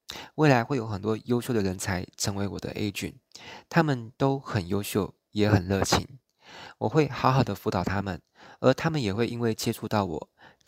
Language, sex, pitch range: Chinese, male, 100-120 Hz